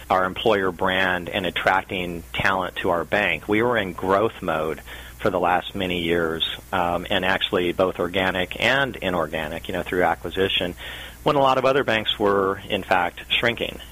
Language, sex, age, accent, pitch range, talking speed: English, male, 40-59, American, 85-105 Hz, 175 wpm